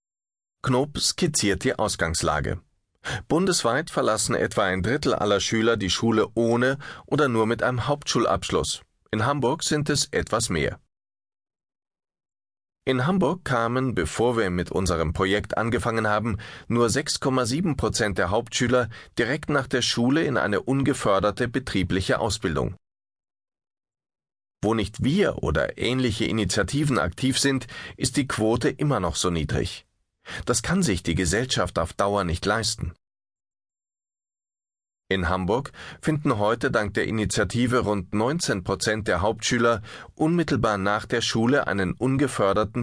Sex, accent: male, German